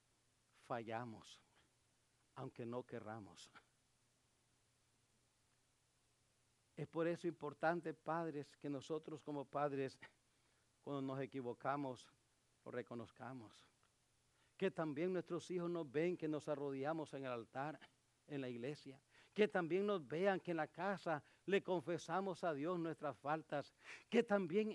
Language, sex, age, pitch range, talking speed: English, male, 60-79, 135-205 Hz, 120 wpm